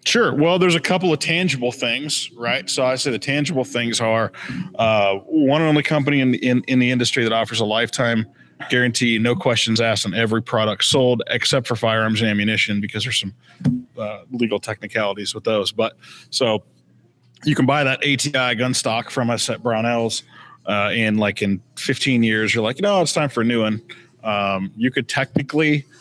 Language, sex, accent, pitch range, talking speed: English, male, American, 110-130 Hz, 190 wpm